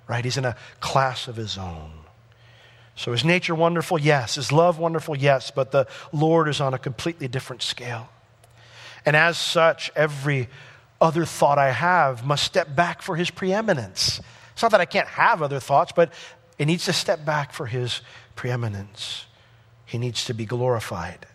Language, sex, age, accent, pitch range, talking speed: English, male, 40-59, American, 115-140 Hz, 170 wpm